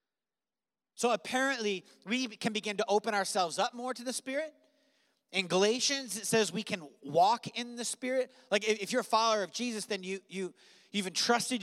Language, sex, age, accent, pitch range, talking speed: English, male, 30-49, American, 165-225 Hz, 180 wpm